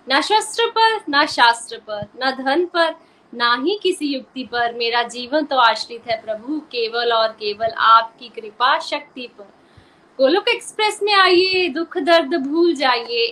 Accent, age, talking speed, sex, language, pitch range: native, 20-39, 150 wpm, female, Hindi, 260-370 Hz